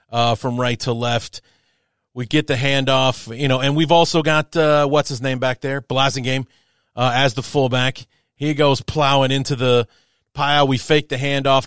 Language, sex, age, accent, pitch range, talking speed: English, male, 30-49, American, 125-165 Hz, 190 wpm